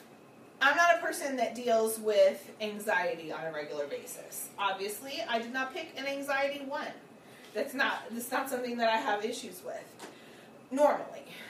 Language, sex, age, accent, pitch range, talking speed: English, female, 30-49, American, 190-245 Hz, 160 wpm